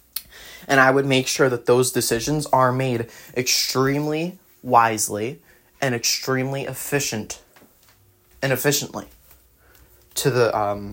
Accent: American